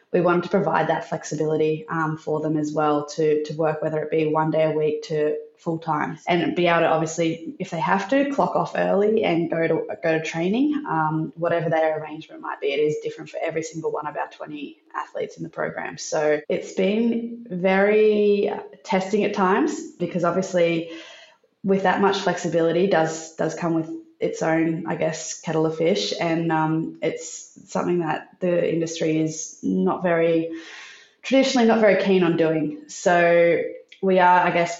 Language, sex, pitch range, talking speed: English, female, 160-195 Hz, 185 wpm